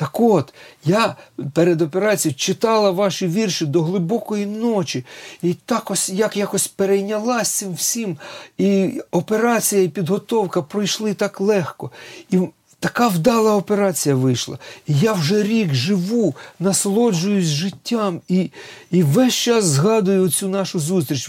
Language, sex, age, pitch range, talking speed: Ukrainian, male, 40-59, 150-200 Hz, 130 wpm